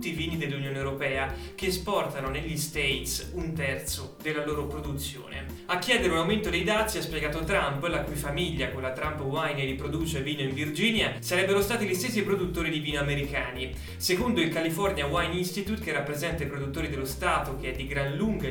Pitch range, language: 140-190 Hz, Italian